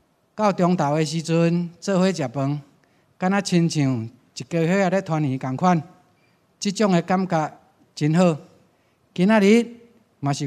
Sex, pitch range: male, 140-180 Hz